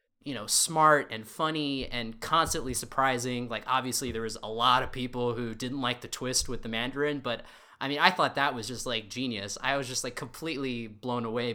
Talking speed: 215 wpm